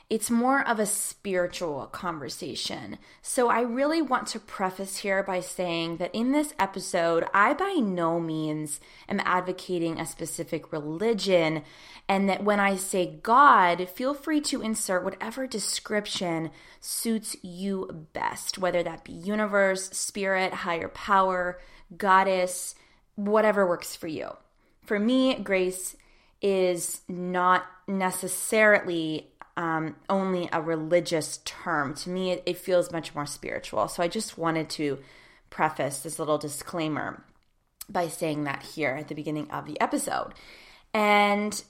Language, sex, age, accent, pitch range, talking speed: English, female, 20-39, American, 165-205 Hz, 135 wpm